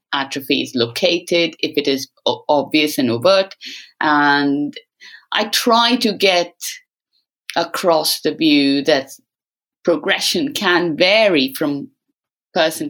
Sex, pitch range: female, 150-250 Hz